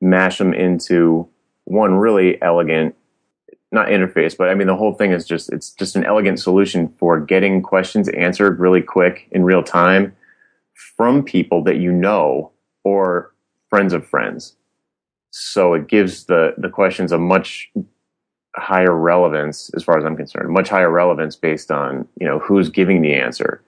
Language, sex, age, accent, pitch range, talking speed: English, male, 30-49, American, 80-95 Hz, 165 wpm